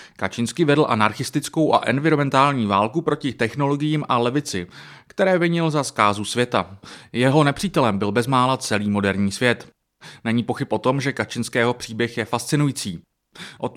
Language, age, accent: Czech, 30-49, native